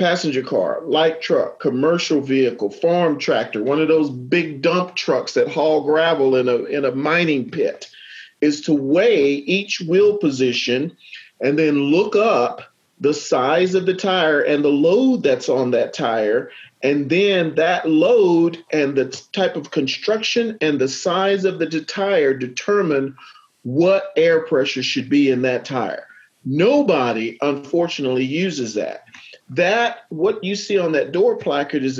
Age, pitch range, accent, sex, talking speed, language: 40-59, 135-185 Hz, American, male, 155 wpm, English